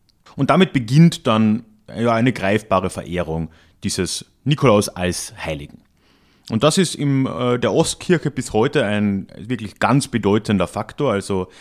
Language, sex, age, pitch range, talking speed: German, male, 30-49, 90-125 Hz, 130 wpm